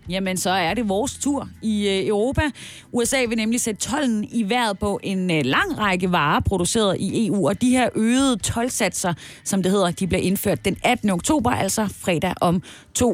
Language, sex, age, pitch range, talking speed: Danish, female, 30-49, 180-240 Hz, 185 wpm